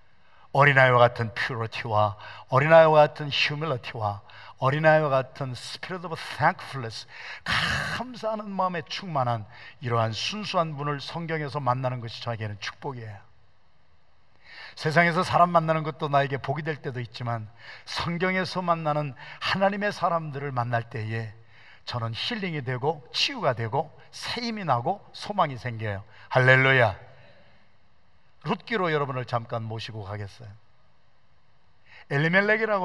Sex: male